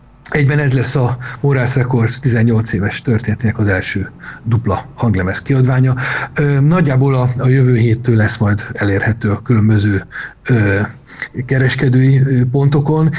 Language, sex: Hungarian, male